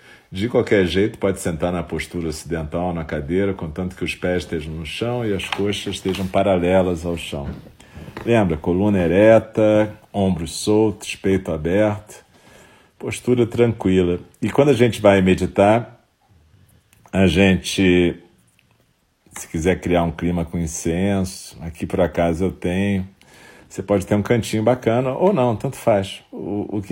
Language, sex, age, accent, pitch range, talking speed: Portuguese, male, 40-59, Brazilian, 90-105 Hz, 145 wpm